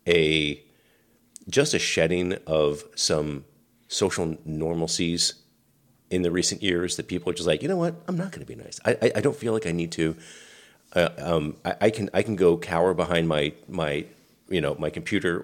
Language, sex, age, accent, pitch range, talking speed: English, male, 40-59, American, 80-90 Hz, 200 wpm